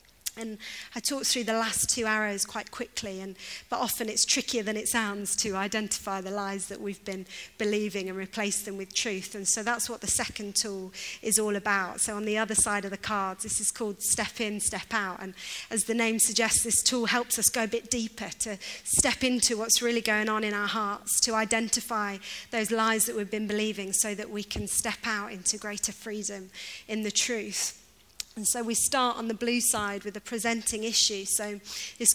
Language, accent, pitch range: English, British, 205-235 Hz